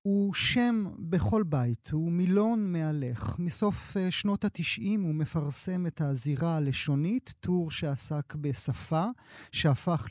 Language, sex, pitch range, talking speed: Hebrew, male, 150-195 Hz, 115 wpm